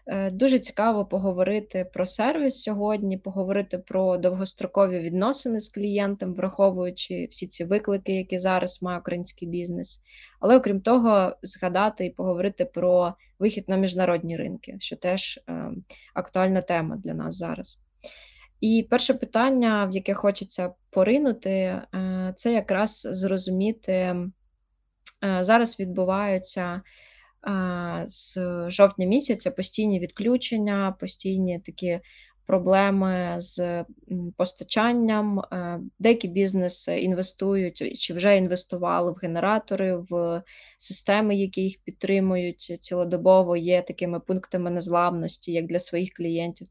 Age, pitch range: 20-39, 180-205 Hz